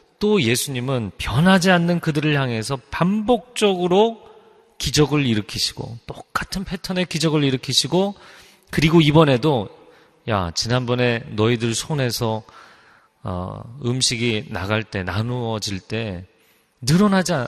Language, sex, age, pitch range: Korean, male, 30-49, 105-150 Hz